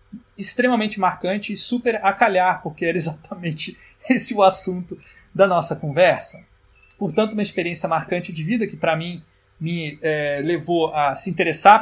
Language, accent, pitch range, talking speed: Portuguese, Brazilian, 165-210 Hz, 145 wpm